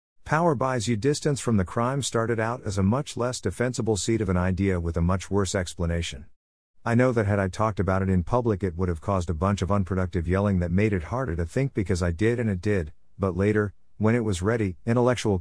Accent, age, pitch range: American, 50-69, 90-115 Hz